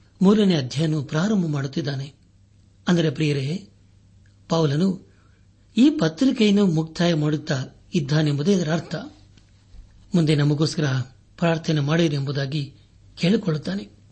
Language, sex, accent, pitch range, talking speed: Kannada, male, native, 130-175 Hz, 80 wpm